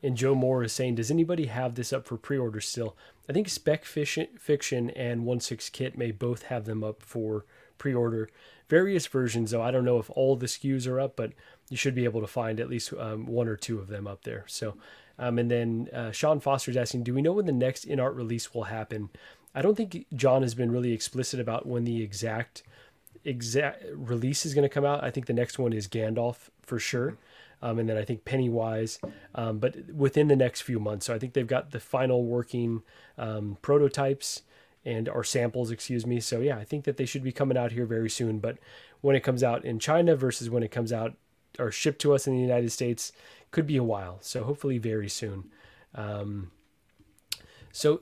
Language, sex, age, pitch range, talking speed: English, male, 20-39, 115-140 Hz, 215 wpm